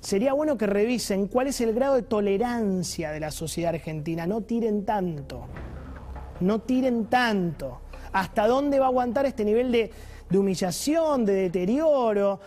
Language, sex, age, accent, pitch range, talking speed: Spanish, male, 30-49, Argentinian, 170-250 Hz, 155 wpm